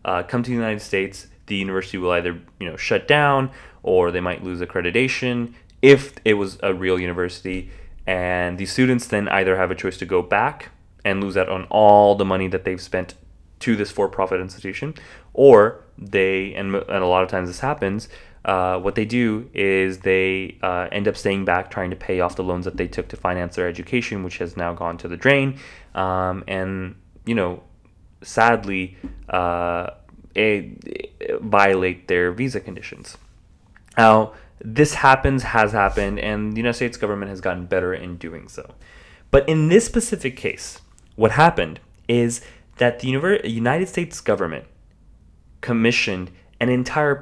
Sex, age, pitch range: male, 20-39, 90-125 Hz